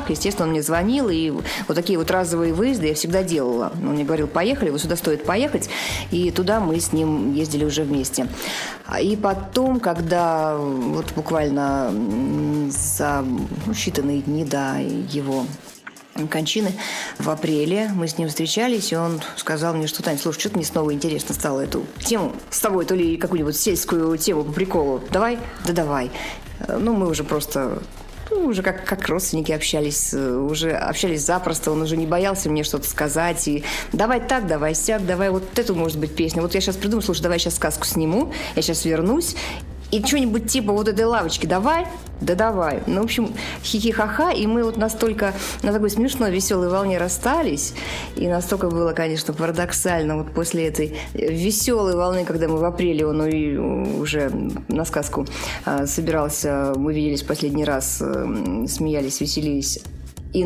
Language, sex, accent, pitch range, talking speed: Russian, female, native, 150-195 Hz, 165 wpm